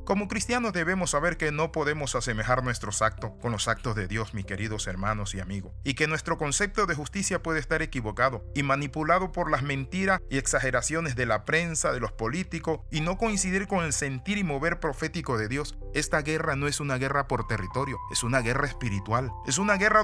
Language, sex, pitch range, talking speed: Spanish, male, 120-165 Hz, 205 wpm